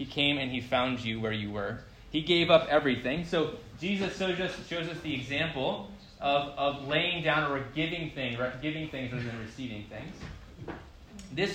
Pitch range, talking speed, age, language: 110-150 Hz, 170 wpm, 20-39, English